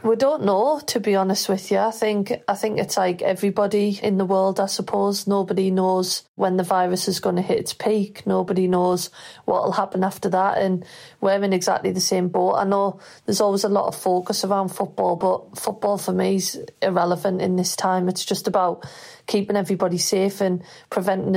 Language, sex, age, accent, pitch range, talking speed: English, female, 30-49, British, 185-200 Hz, 200 wpm